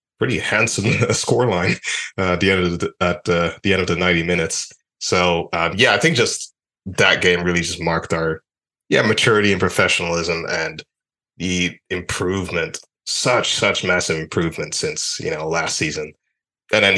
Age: 20-39